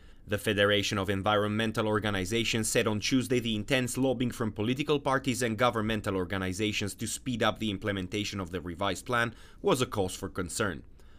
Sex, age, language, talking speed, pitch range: male, 30-49, English, 165 wpm, 100-115 Hz